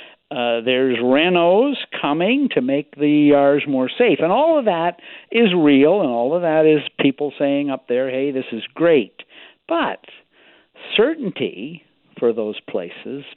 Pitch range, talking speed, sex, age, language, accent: 130-170 Hz, 155 wpm, male, 60-79, English, American